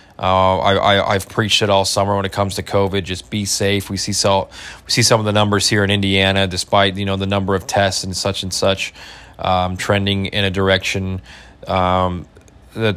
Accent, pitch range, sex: American, 95-110 Hz, male